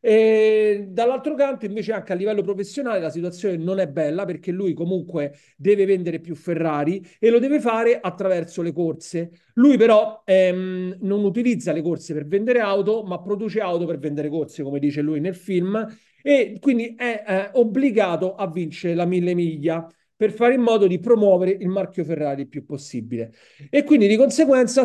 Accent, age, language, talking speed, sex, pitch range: native, 40-59, Italian, 175 wpm, male, 150-210 Hz